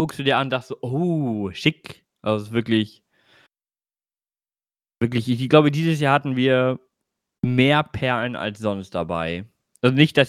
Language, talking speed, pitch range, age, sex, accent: German, 145 wpm, 110-130 Hz, 20-39, male, German